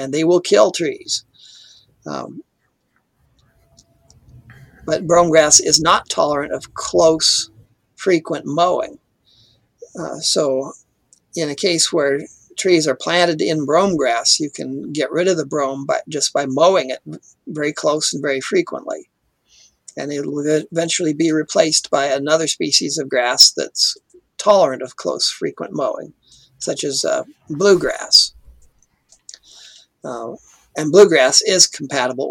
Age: 50-69